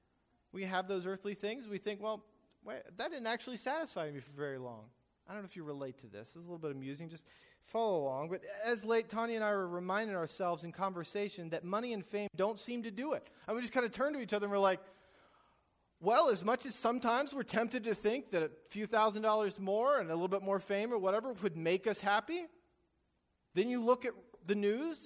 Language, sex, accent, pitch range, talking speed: English, male, American, 135-210 Hz, 235 wpm